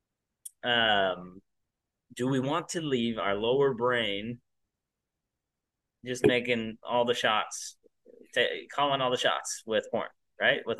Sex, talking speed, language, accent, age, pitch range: male, 120 wpm, English, American, 20-39, 110-150 Hz